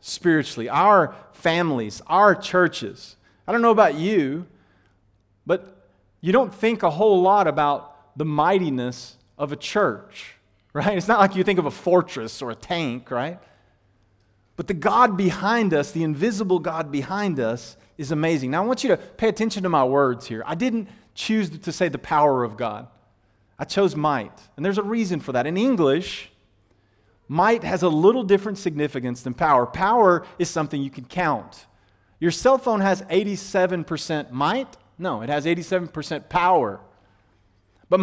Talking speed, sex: 165 wpm, male